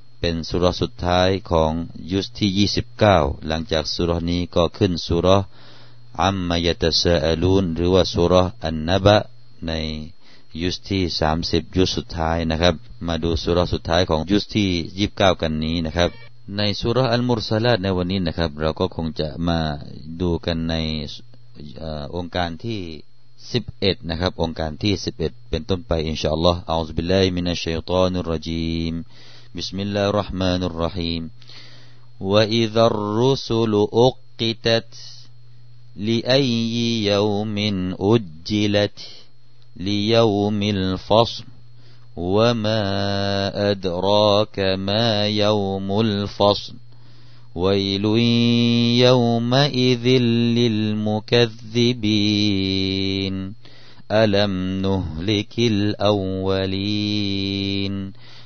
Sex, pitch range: male, 85-115 Hz